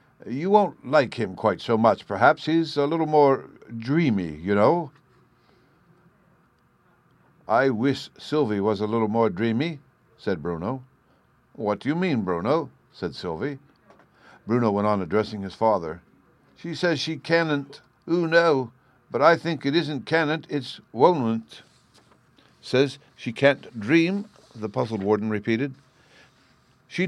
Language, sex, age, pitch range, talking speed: English, male, 60-79, 115-160 Hz, 135 wpm